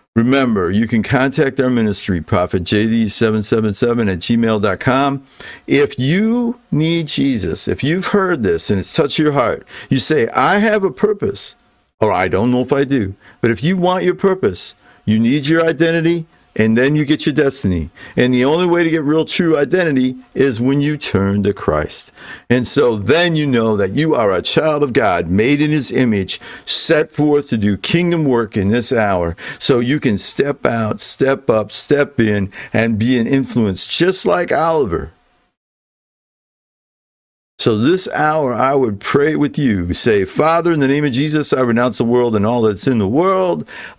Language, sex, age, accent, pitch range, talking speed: English, male, 50-69, American, 110-150 Hz, 180 wpm